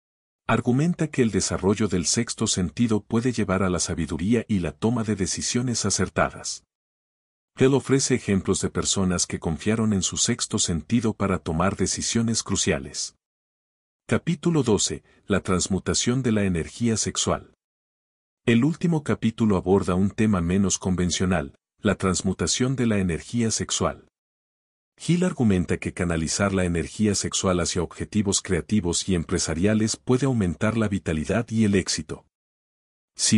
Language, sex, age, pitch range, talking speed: Spanish, male, 50-69, 90-110 Hz, 135 wpm